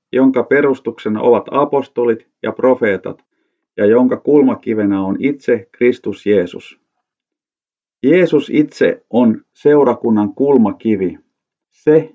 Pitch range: 110-140 Hz